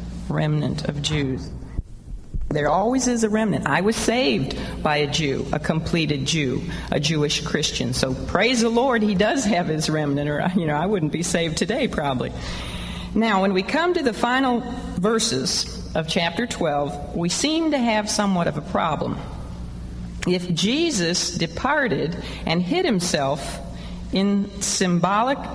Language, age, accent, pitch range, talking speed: English, 50-69, American, 160-225 Hz, 155 wpm